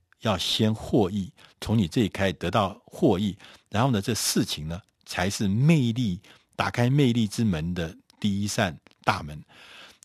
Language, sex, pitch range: Chinese, male, 95-130 Hz